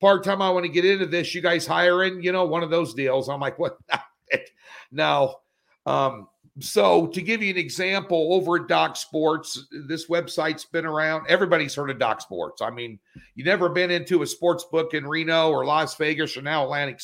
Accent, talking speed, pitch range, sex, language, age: American, 200 wpm, 155-185 Hz, male, English, 50-69